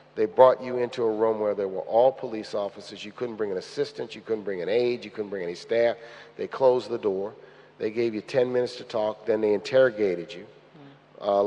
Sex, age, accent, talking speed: male, 50-69, American, 225 wpm